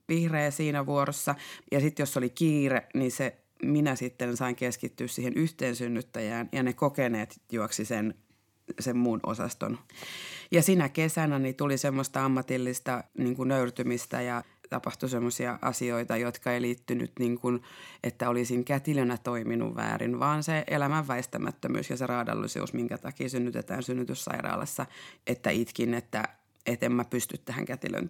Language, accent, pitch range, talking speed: Finnish, native, 120-145 Hz, 145 wpm